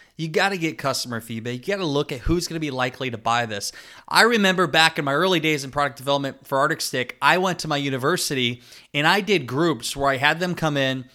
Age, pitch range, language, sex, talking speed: 20-39, 130-160 Hz, English, male, 255 wpm